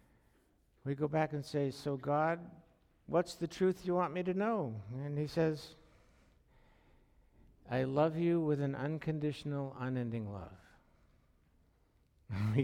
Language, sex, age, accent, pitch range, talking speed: English, male, 60-79, American, 110-160 Hz, 130 wpm